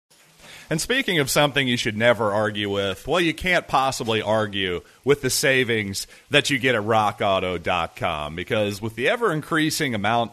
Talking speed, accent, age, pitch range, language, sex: 155 wpm, American, 40-59, 105-135 Hz, English, male